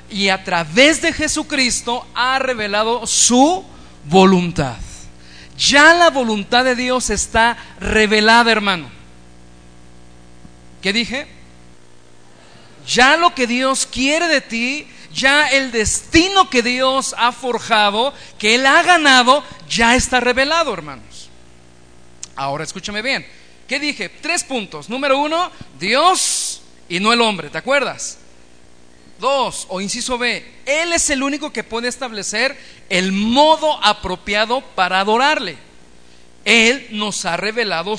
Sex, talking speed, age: male, 120 wpm, 40-59